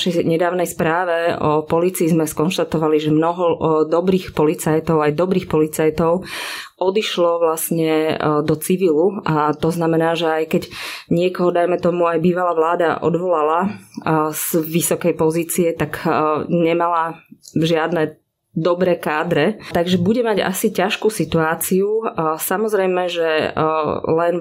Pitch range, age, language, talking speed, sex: 160-175 Hz, 20-39, Slovak, 120 wpm, female